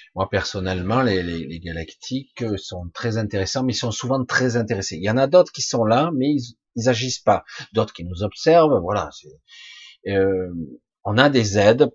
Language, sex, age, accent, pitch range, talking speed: French, male, 40-59, French, 90-120 Hz, 195 wpm